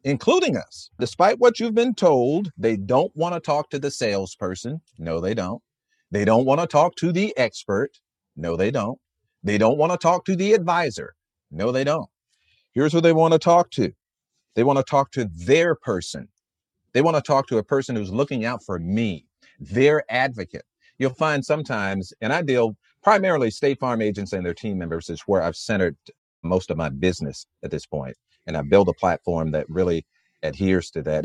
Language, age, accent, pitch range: English, 40-59, American, 100-150 Hz